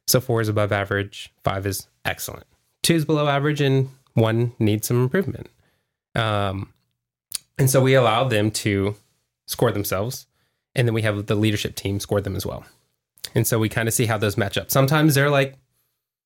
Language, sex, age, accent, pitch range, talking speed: English, male, 20-39, American, 105-130 Hz, 185 wpm